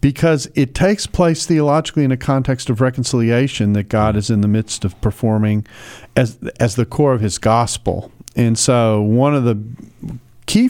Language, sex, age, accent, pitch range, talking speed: English, male, 40-59, American, 105-130 Hz, 175 wpm